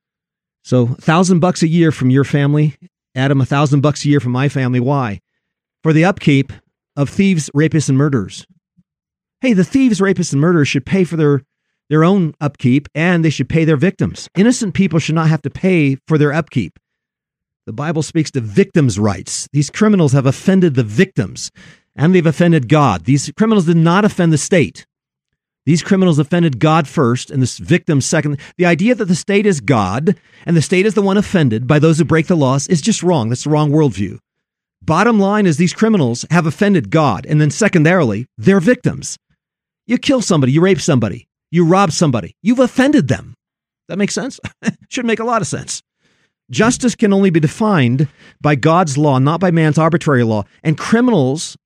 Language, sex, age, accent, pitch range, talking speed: English, male, 40-59, American, 140-185 Hz, 190 wpm